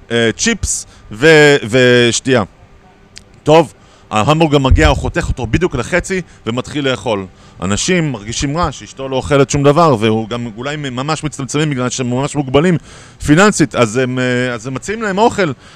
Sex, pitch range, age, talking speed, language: male, 125-180 Hz, 30-49, 135 wpm, Hebrew